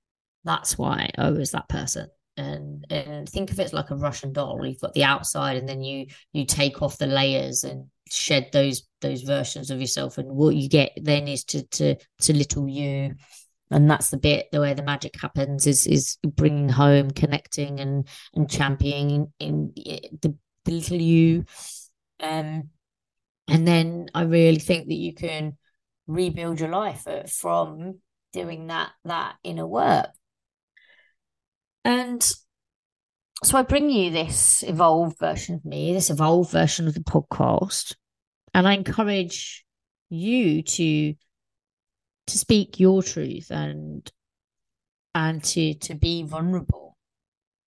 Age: 20-39